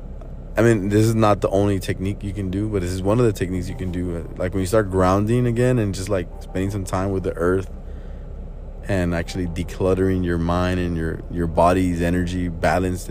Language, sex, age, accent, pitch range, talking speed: English, male, 20-39, American, 70-95 Hz, 215 wpm